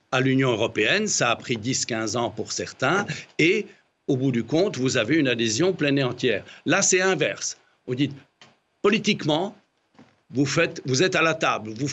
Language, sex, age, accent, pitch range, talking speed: French, male, 60-79, French, 120-155 Hz, 180 wpm